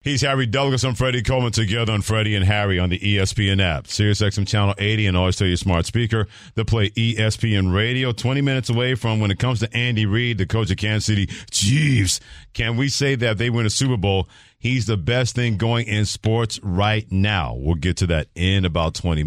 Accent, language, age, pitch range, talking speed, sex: American, English, 50-69, 85-115 Hz, 220 wpm, male